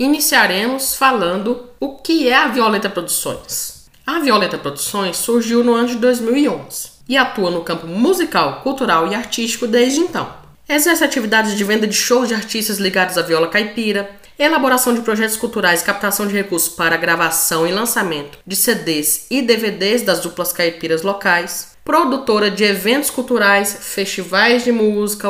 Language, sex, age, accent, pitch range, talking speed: Portuguese, female, 20-39, Brazilian, 180-245 Hz, 155 wpm